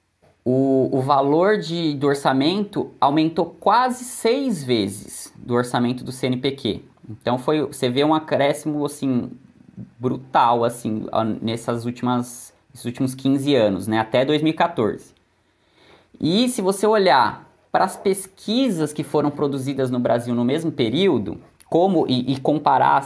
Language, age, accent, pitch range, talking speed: Portuguese, 20-39, Brazilian, 120-170 Hz, 115 wpm